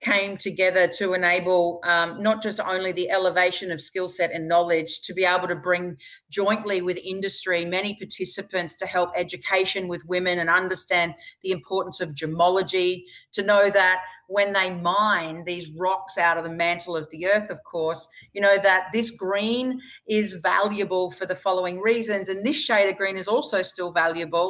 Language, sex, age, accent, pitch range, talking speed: English, female, 30-49, Australian, 180-225 Hz, 180 wpm